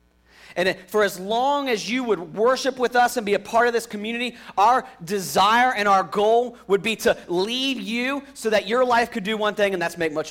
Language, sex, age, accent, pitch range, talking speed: English, male, 40-59, American, 175-230 Hz, 225 wpm